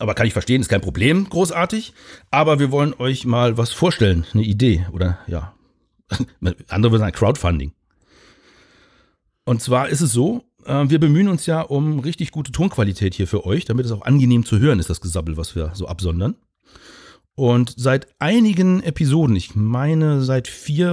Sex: male